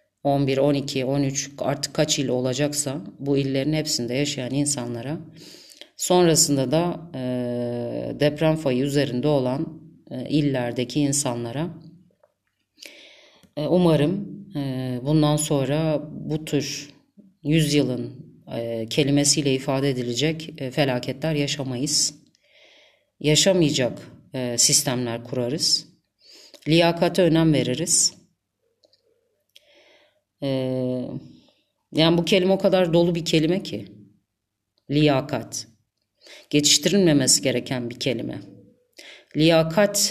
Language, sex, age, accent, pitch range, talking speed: Turkish, female, 30-49, native, 135-170 Hz, 90 wpm